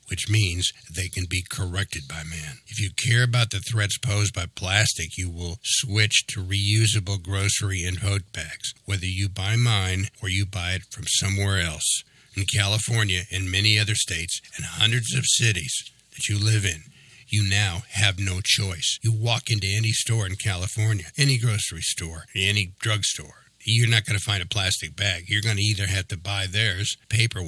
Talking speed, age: 185 wpm, 60-79